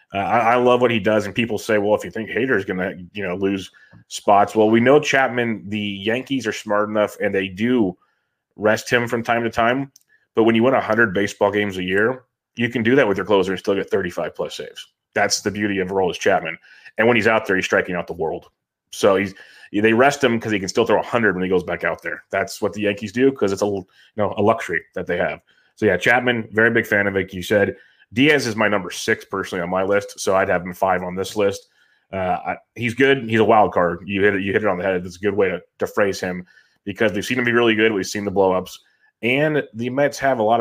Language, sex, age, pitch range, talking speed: English, male, 30-49, 95-120 Hz, 260 wpm